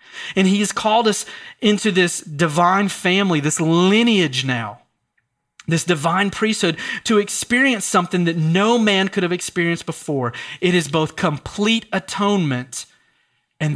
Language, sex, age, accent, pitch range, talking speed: English, male, 30-49, American, 125-175 Hz, 135 wpm